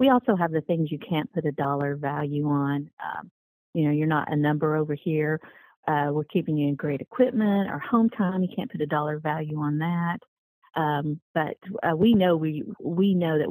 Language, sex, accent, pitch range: English, female, American, 150-180 Hz